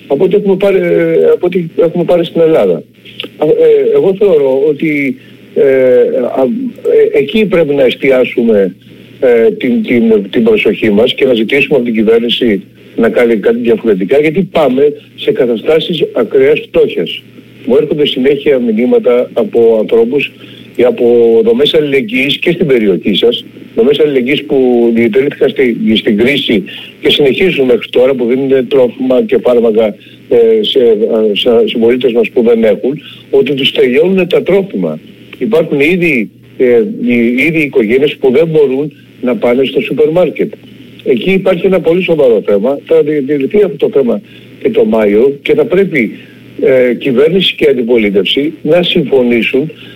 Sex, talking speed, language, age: male, 140 wpm, Greek, 60-79